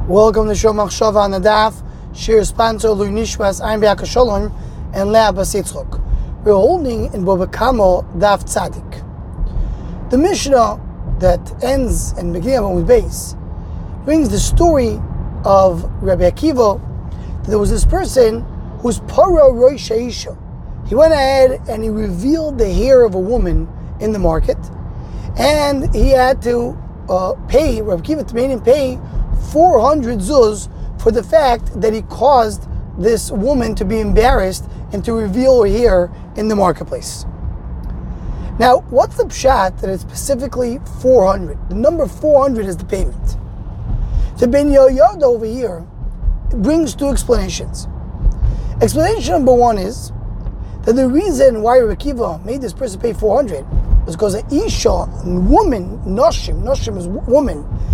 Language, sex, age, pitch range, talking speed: English, male, 20-39, 195-265 Hz, 140 wpm